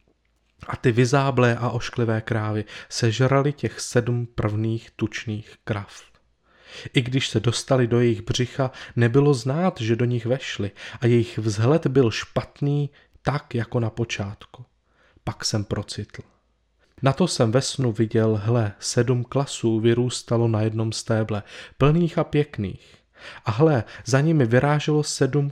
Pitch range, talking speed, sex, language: 110-130 Hz, 140 wpm, male, Czech